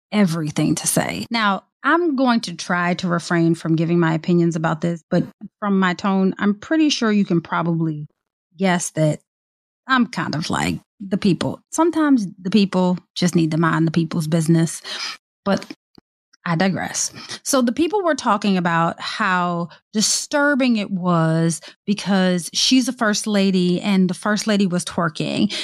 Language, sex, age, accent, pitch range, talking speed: English, female, 30-49, American, 175-225 Hz, 160 wpm